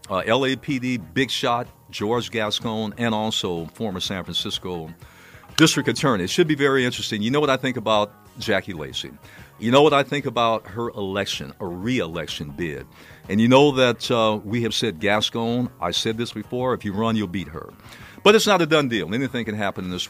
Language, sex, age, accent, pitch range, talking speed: English, male, 50-69, American, 95-125 Hz, 200 wpm